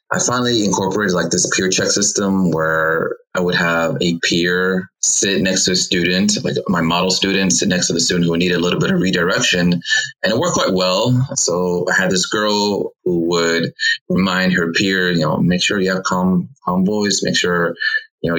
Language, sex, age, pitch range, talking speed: English, male, 20-39, 85-105 Hz, 205 wpm